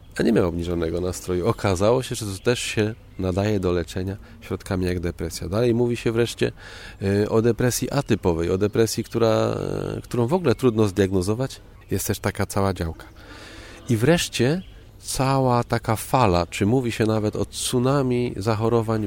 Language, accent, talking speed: Polish, native, 150 wpm